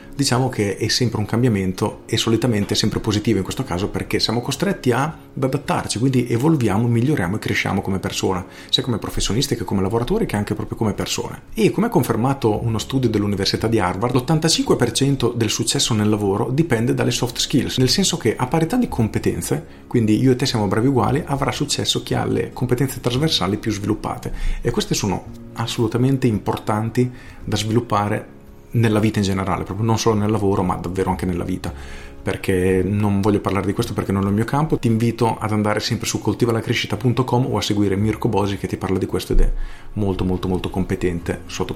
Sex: male